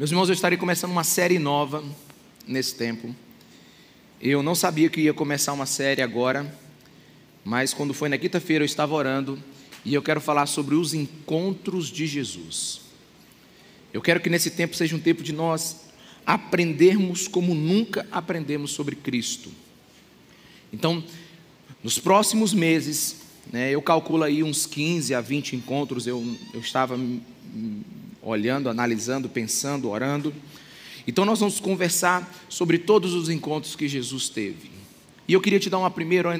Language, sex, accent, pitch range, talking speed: Portuguese, male, Brazilian, 135-170 Hz, 150 wpm